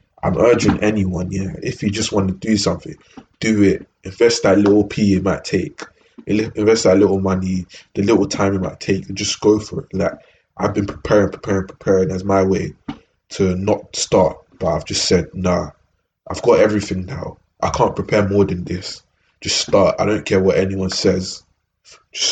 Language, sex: English, male